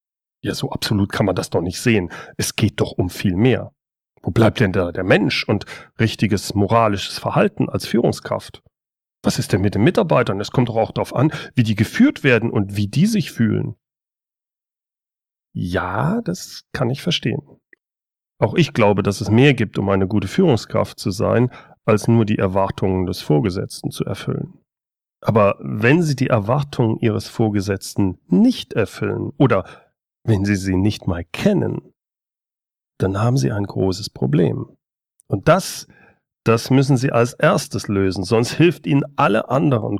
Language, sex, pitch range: German, male, 105-140 Hz